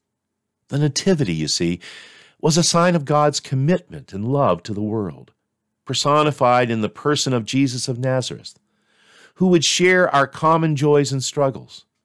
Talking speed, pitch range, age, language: 155 wpm, 110-150 Hz, 50-69, English